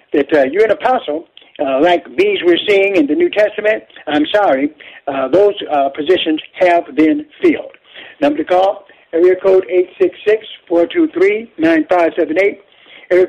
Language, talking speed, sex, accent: English, 130 wpm, male, American